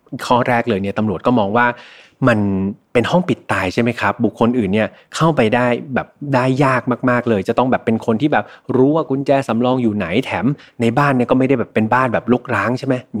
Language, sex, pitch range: Thai, male, 115-150 Hz